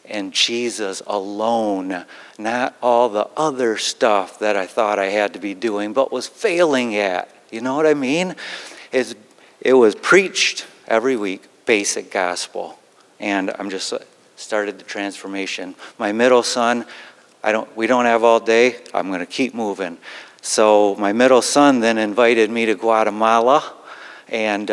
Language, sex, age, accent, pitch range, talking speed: English, male, 50-69, American, 105-125 Hz, 155 wpm